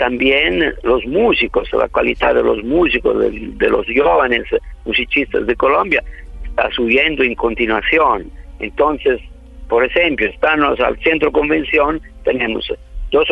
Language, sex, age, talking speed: Spanish, male, 50-69, 125 wpm